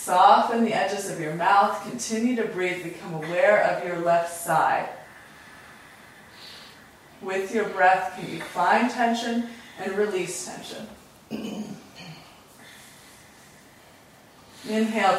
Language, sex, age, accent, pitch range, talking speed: English, female, 30-49, American, 175-215 Hz, 105 wpm